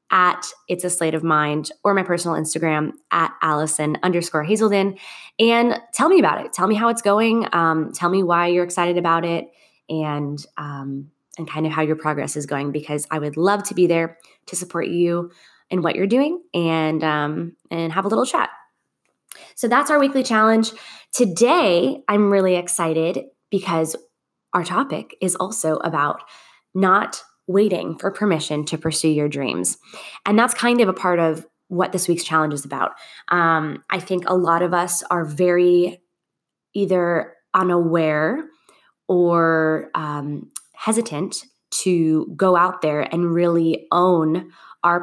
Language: English